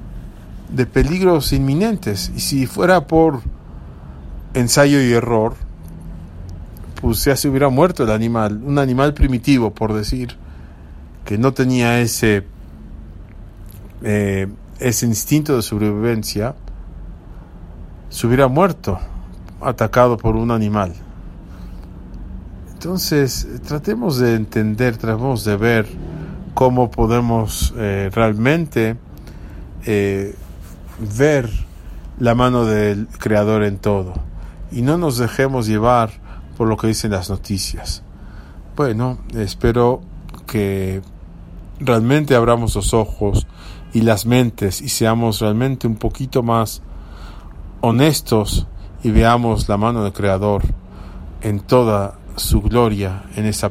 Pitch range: 90-120 Hz